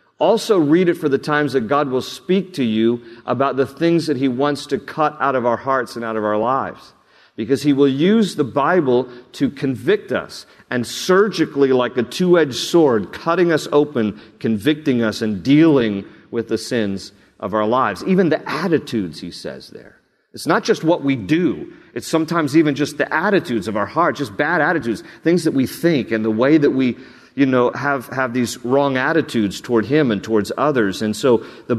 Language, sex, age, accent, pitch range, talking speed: English, male, 50-69, American, 115-145 Hz, 200 wpm